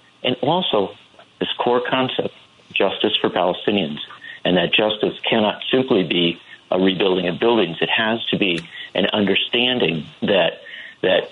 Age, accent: 50-69, American